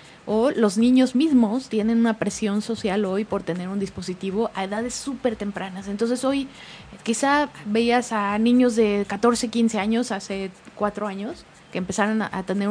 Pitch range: 200-240 Hz